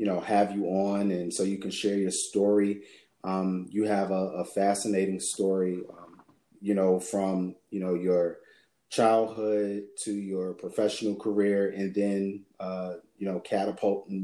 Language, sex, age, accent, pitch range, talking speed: English, male, 30-49, American, 95-105 Hz, 155 wpm